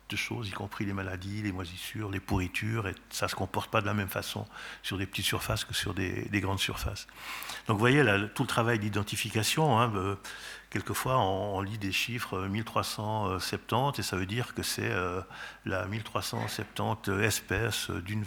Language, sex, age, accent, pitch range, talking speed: French, male, 50-69, French, 95-110 Hz, 185 wpm